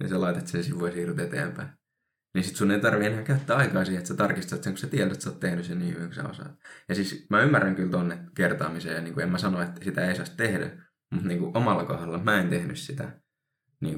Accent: native